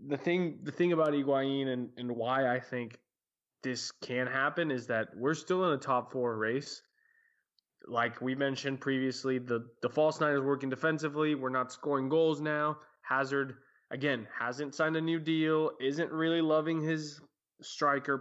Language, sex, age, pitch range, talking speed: English, male, 20-39, 125-150 Hz, 170 wpm